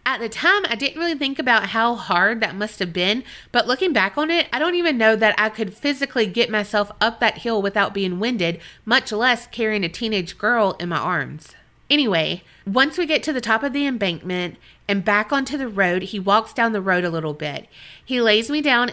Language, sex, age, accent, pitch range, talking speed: English, female, 30-49, American, 190-245 Hz, 225 wpm